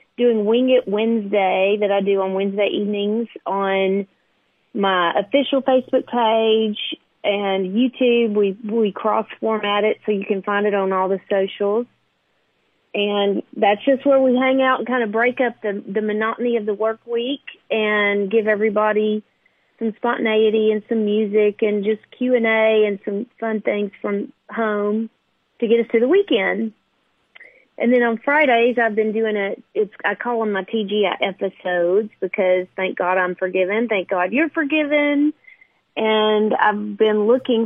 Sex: female